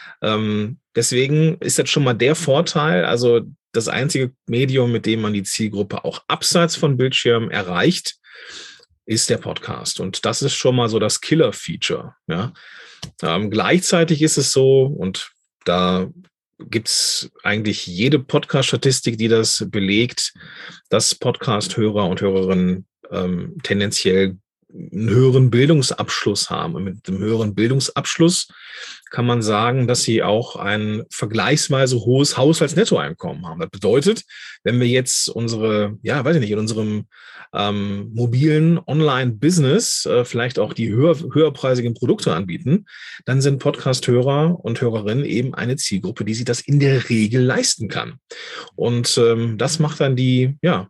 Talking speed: 145 wpm